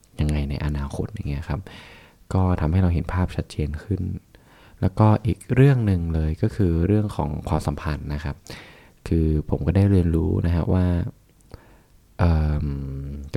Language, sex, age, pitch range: Thai, male, 20-39, 80-100 Hz